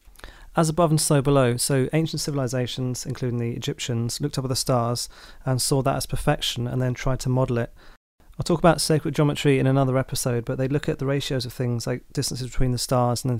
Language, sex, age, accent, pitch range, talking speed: English, male, 30-49, British, 125-135 Hz, 225 wpm